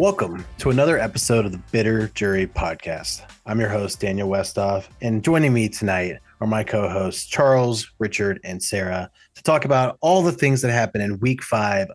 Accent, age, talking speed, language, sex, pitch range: American, 30-49, 180 wpm, English, male, 100-125 Hz